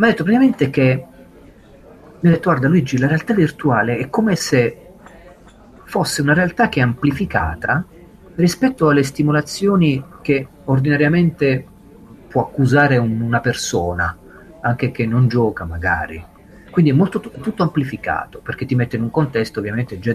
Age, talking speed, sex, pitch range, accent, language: 40-59, 150 wpm, male, 105-145 Hz, native, Italian